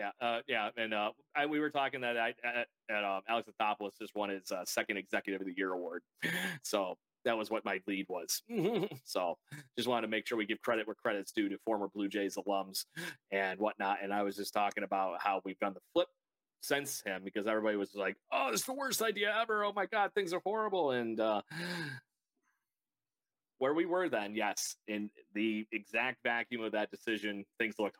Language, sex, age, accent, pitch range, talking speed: English, male, 30-49, American, 100-145 Hz, 210 wpm